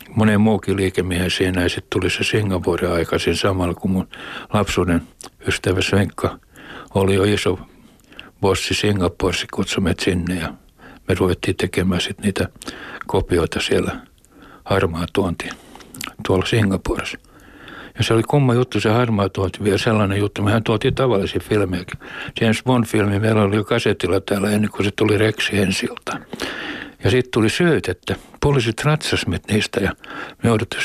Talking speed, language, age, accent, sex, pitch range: 135 wpm, Finnish, 60-79, native, male, 95-115 Hz